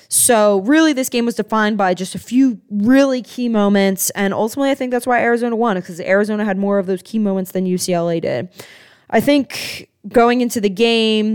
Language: English